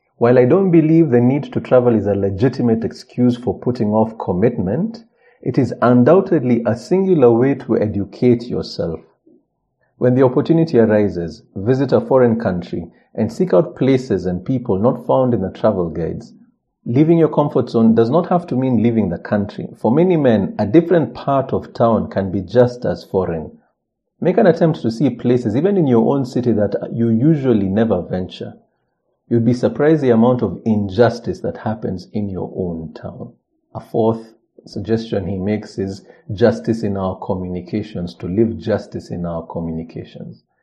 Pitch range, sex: 100-130 Hz, male